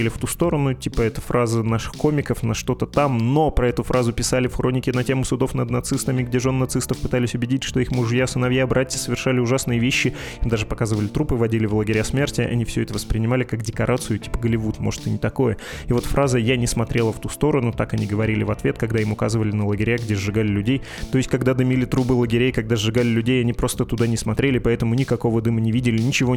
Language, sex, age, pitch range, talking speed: Russian, male, 20-39, 115-130 Hz, 220 wpm